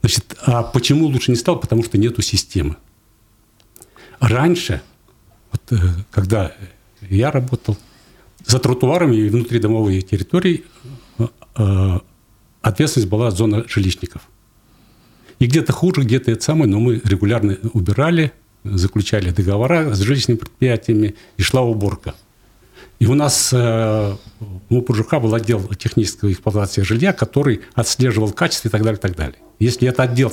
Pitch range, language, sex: 105-125 Hz, Russian, male